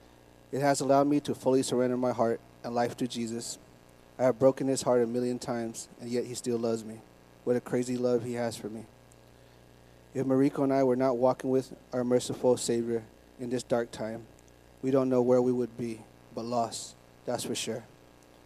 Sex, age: male, 30-49